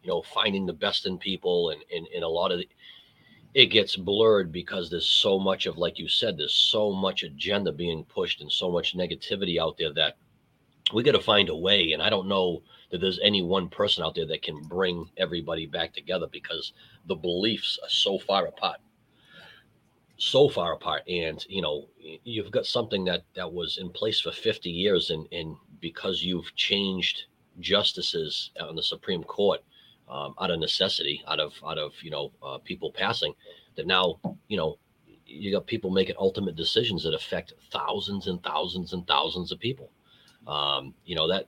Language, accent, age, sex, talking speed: English, American, 40-59, male, 190 wpm